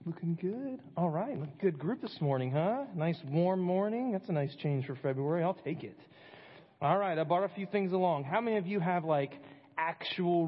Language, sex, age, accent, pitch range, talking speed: English, male, 30-49, American, 130-170 Hz, 205 wpm